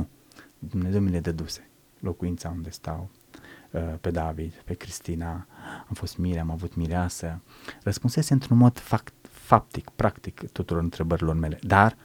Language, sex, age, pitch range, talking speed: Romanian, male, 30-49, 85-120 Hz, 135 wpm